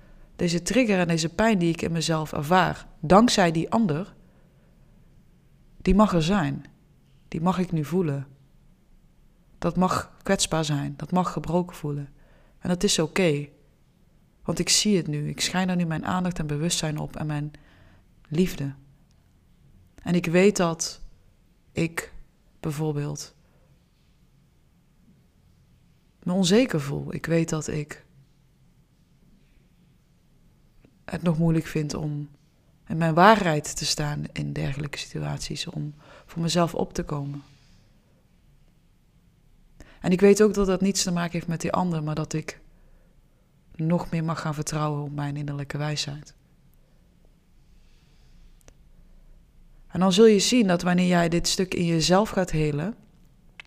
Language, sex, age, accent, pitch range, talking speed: Dutch, female, 20-39, Dutch, 150-180 Hz, 135 wpm